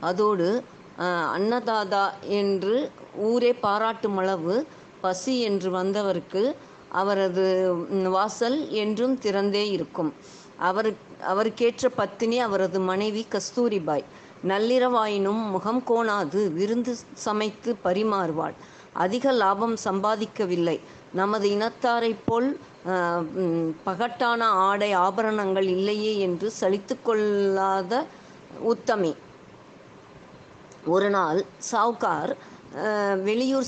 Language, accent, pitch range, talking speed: Tamil, native, 190-230 Hz, 70 wpm